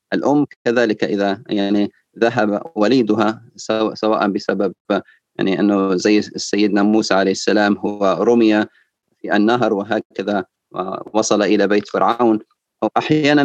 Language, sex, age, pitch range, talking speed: Arabic, male, 30-49, 105-115 Hz, 115 wpm